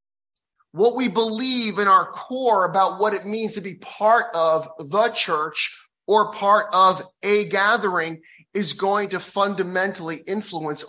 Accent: American